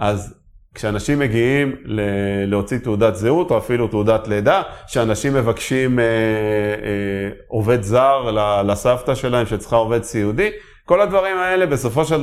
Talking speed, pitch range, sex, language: 130 wpm, 110-145 Hz, male, Hebrew